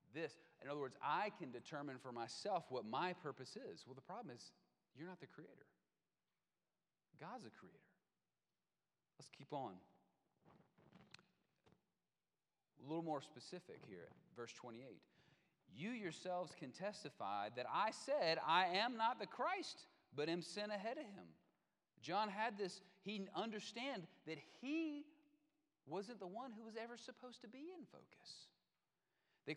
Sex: male